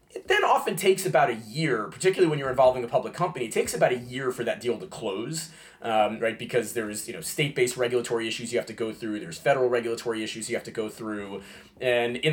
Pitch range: 120-160 Hz